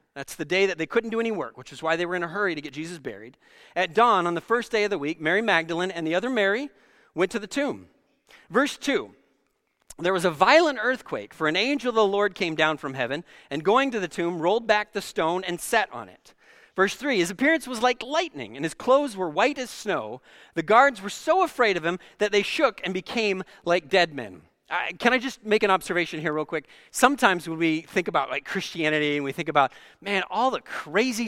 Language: English